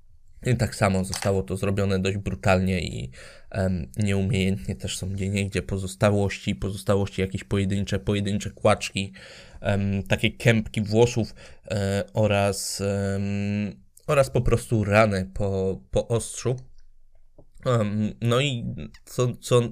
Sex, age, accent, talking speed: male, 20-39, native, 130 wpm